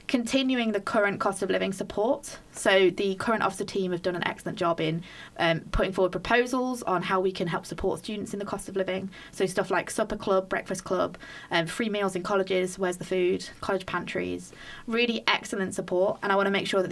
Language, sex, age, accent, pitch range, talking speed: English, female, 20-39, British, 175-200 Hz, 215 wpm